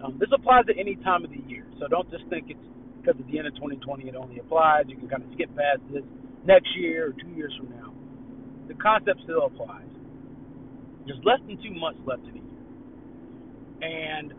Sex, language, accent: male, English, American